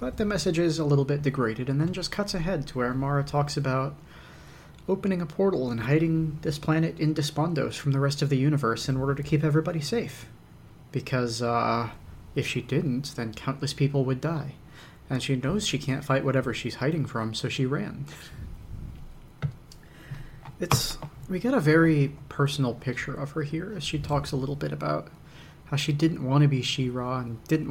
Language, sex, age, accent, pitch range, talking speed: English, male, 30-49, American, 130-155 Hz, 190 wpm